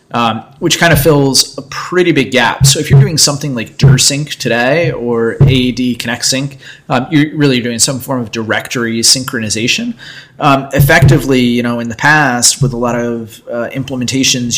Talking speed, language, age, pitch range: 175 wpm, English, 20-39, 120-135 Hz